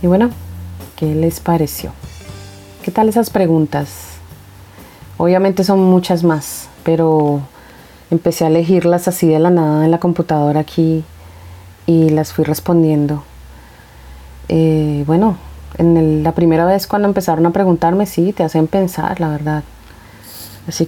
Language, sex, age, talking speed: Spanish, female, 30-49, 130 wpm